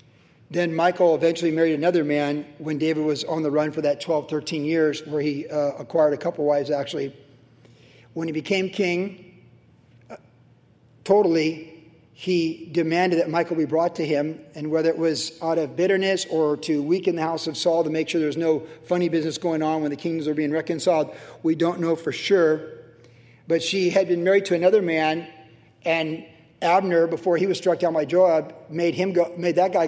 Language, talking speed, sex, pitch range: English, 195 wpm, male, 155-170 Hz